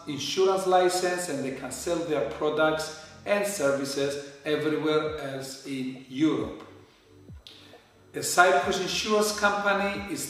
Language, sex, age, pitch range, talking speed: Greek, male, 50-69, 140-180 Hz, 110 wpm